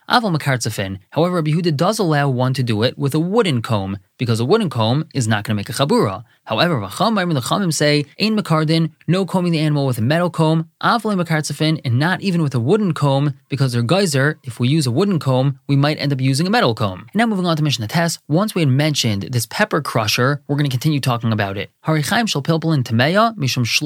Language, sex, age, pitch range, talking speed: English, male, 20-39, 120-160 Hz, 200 wpm